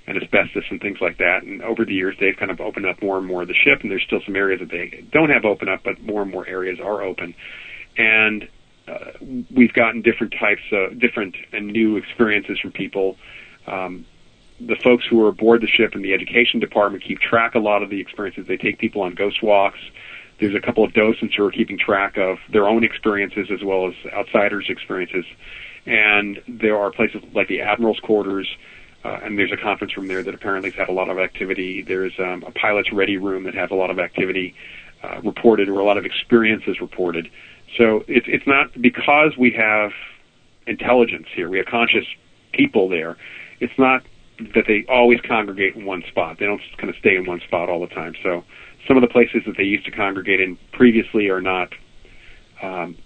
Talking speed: 215 wpm